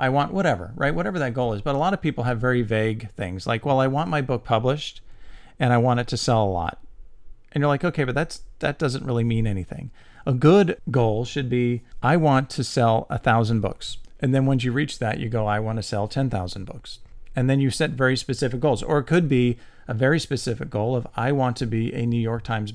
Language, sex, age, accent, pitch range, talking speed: English, male, 40-59, American, 115-135 Hz, 245 wpm